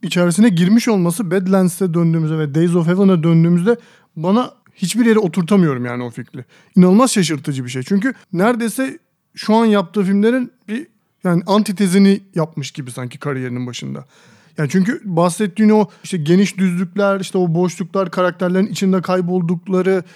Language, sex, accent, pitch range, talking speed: Turkish, male, native, 165-210 Hz, 145 wpm